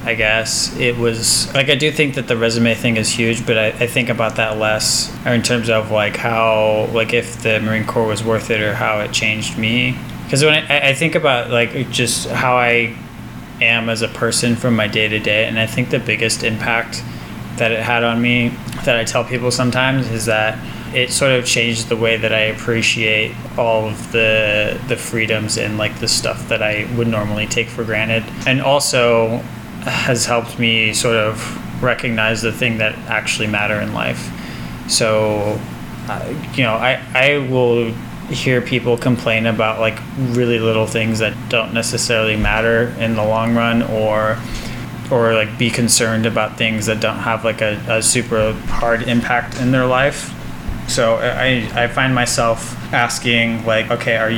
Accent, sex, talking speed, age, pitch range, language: American, male, 185 wpm, 20-39, 110-120 Hz, English